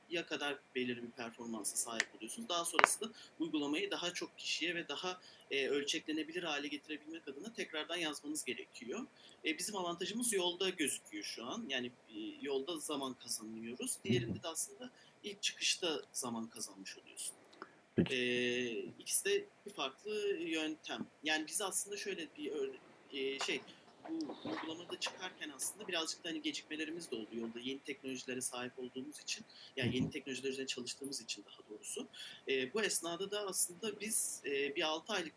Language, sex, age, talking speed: English, male, 40-59, 150 wpm